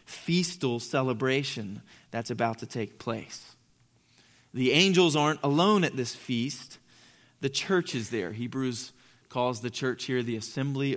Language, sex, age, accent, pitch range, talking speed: English, male, 20-39, American, 120-145 Hz, 135 wpm